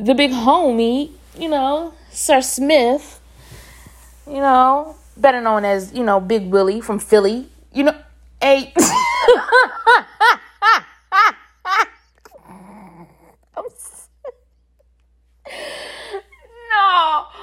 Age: 20-39